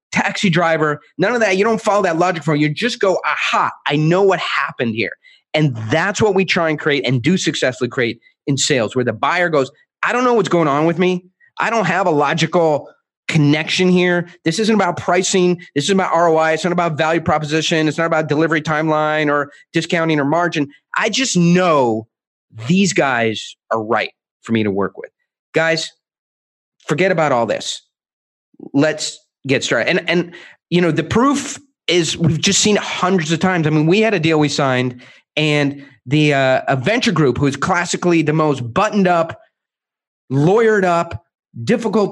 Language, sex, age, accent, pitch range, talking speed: English, male, 30-49, American, 150-190 Hz, 185 wpm